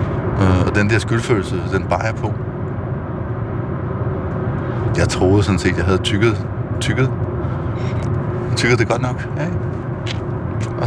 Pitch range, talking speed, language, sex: 105-120 Hz, 125 wpm, Danish, male